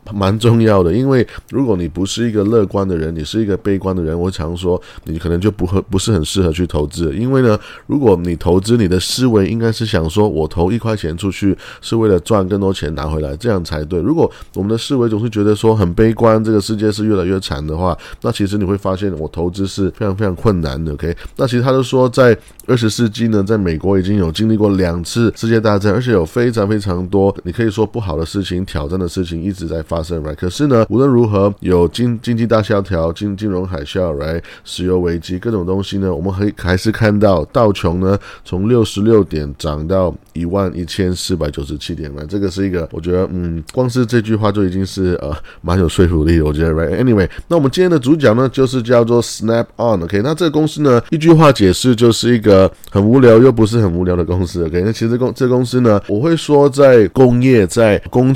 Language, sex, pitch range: Chinese, male, 90-115 Hz